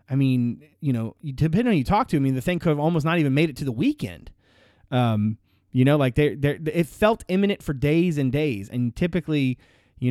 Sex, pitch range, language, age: male, 120-150 Hz, English, 30-49